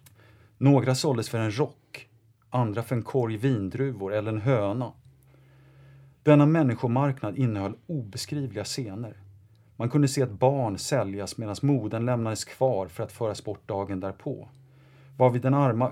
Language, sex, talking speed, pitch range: English, male, 140 wpm, 105-135 Hz